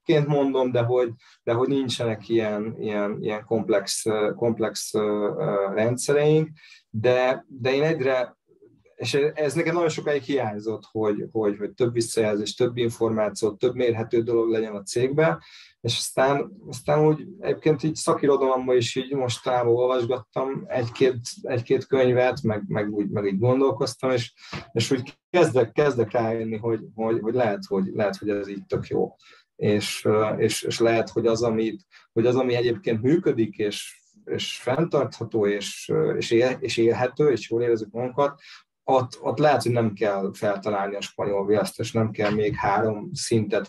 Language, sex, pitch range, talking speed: Hungarian, male, 105-130 Hz, 150 wpm